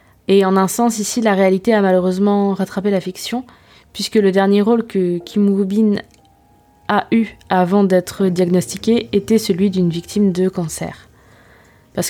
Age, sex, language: 20-39, female, French